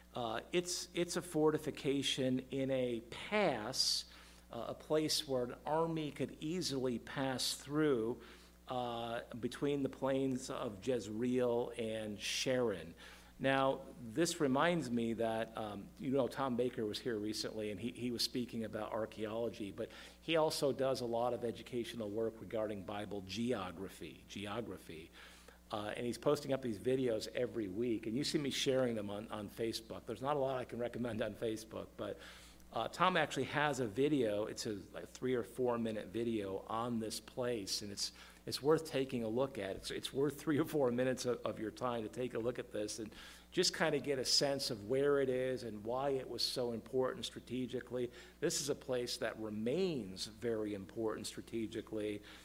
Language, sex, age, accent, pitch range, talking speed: English, male, 50-69, American, 110-135 Hz, 180 wpm